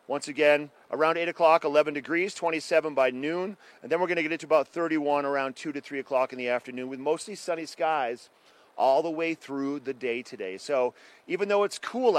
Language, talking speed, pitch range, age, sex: English, 210 wpm, 130-165 Hz, 40-59, male